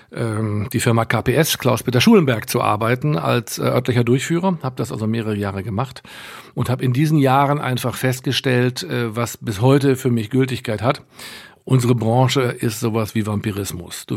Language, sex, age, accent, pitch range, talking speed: German, male, 50-69, German, 110-130 Hz, 155 wpm